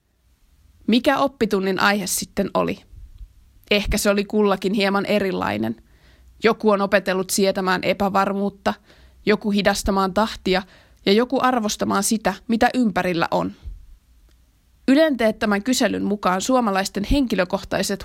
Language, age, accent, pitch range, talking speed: Finnish, 20-39, native, 185-215 Hz, 105 wpm